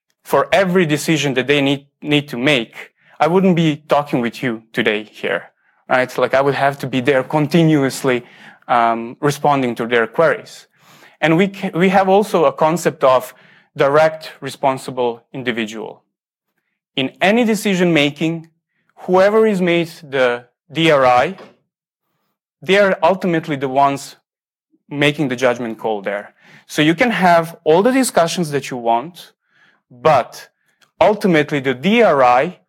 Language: English